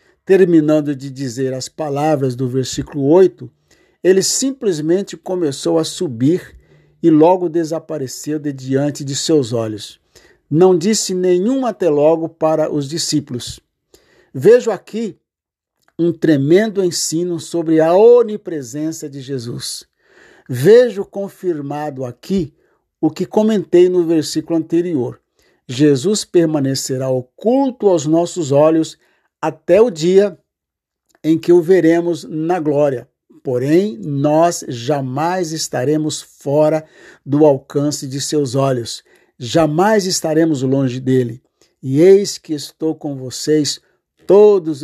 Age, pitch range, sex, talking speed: 60-79, 140-175 Hz, male, 110 wpm